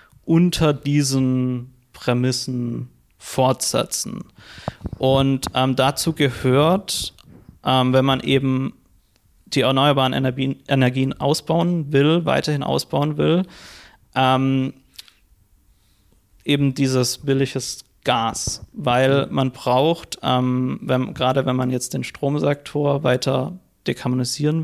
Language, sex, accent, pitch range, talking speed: German, male, German, 125-140 Hz, 90 wpm